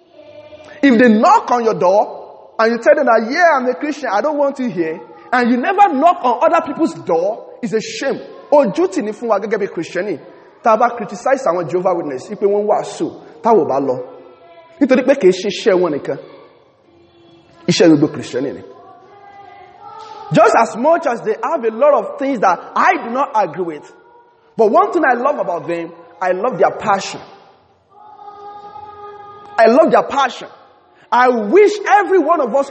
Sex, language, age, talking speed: male, English, 30-49, 125 wpm